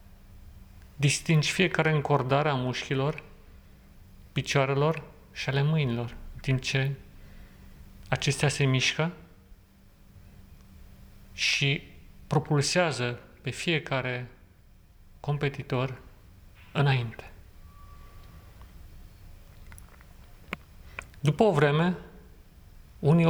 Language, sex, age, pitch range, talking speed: Romanian, male, 40-59, 95-145 Hz, 65 wpm